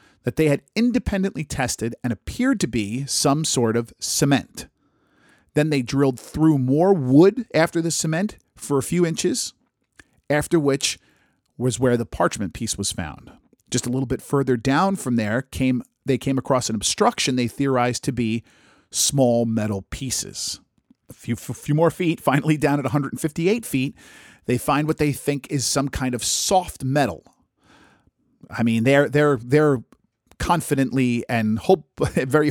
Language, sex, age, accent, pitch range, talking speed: English, male, 40-59, American, 120-150 Hz, 160 wpm